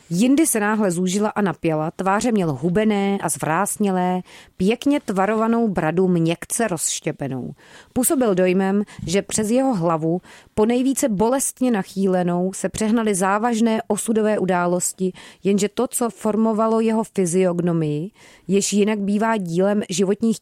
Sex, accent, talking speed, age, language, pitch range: female, native, 125 wpm, 30-49, Czech, 175-215 Hz